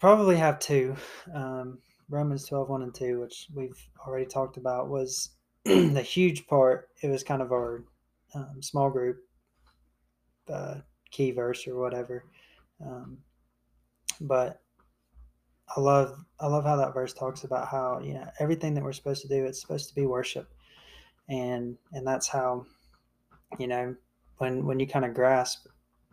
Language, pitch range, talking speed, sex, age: English, 120-135 Hz, 160 wpm, male, 20-39